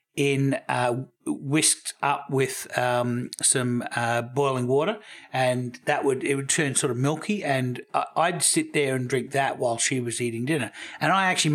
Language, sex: English, male